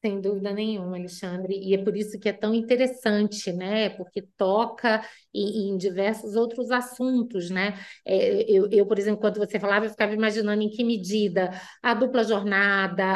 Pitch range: 195-250 Hz